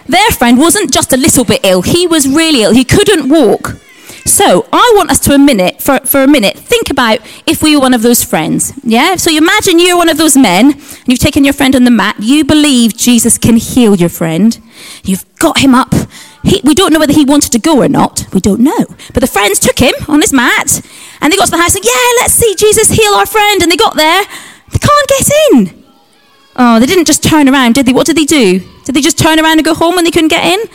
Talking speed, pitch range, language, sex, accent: 260 wpm, 235-325 Hz, English, female, British